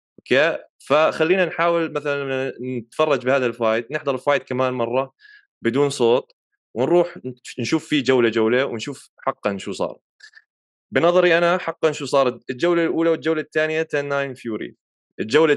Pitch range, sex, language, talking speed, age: 125-155 Hz, male, Arabic, 135 wpm, 20-39